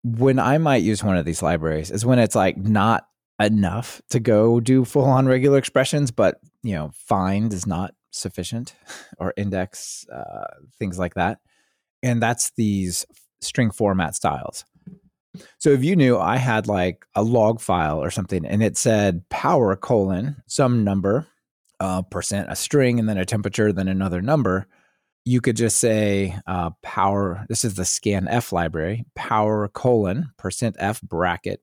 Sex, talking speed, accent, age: male, 165 wpm, American, 20-39